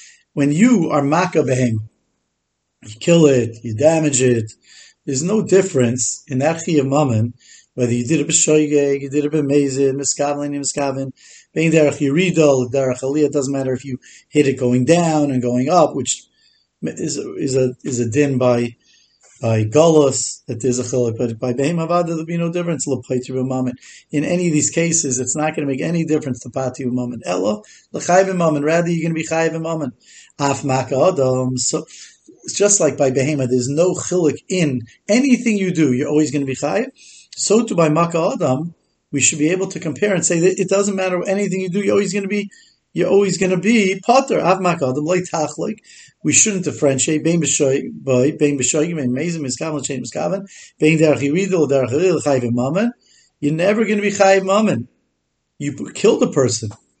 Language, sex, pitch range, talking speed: English, male, 130-175 Hz, 165 wpm